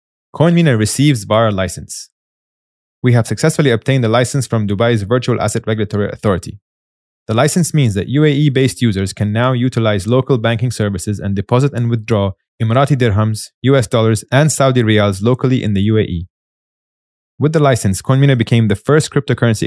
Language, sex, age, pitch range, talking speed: English, male, 20-39, 100-130 Hz, 155 wpm